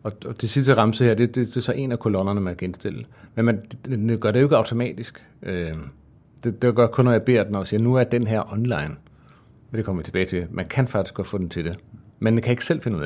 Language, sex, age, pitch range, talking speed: Danish, male, 40-59, 100-125 Hz, 295 wpm